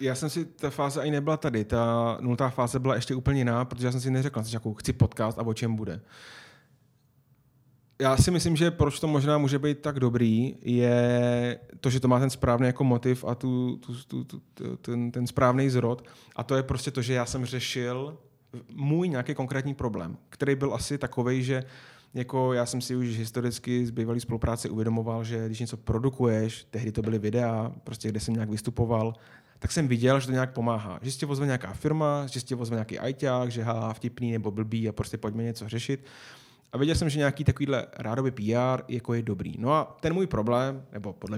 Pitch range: 115-130 Hz